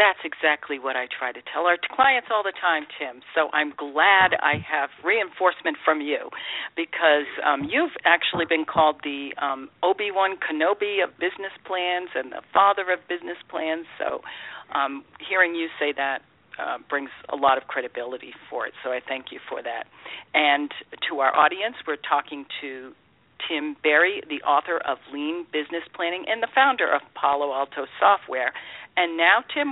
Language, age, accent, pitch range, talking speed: English, 50-69, American, 145-195 Hz, 170 wpm